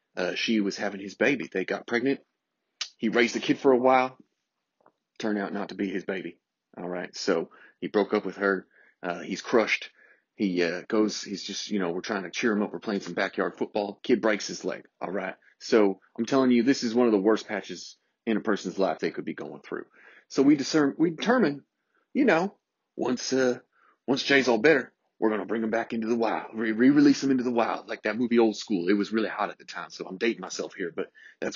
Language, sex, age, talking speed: English, male, 30-49, 240 wpm